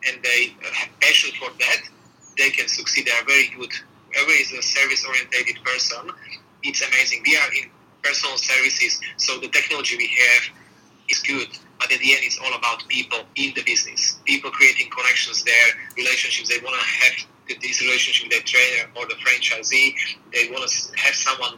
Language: English